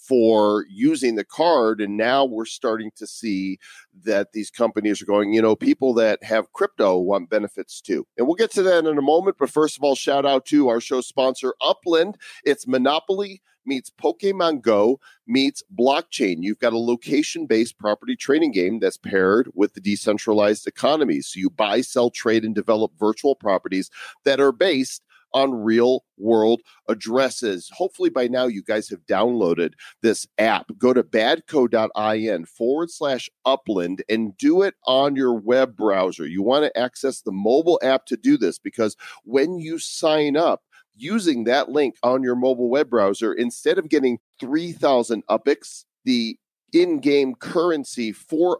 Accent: American